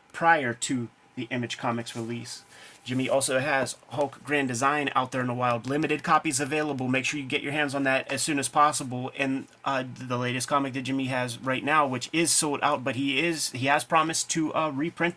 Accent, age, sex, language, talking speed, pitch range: American, 30-49, male, English, 220 wpm, 130-150 Hz